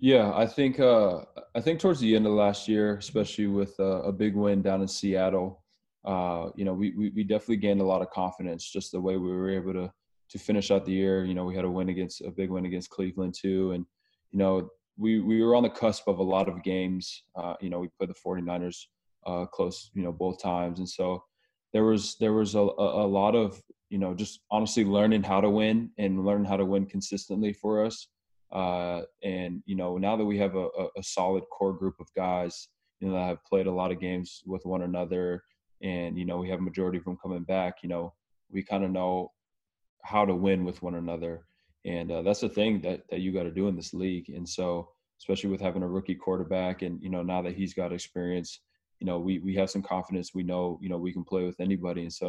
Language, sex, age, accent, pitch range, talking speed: English, male, 20-39, American, 90-100 Hz, 240 wpm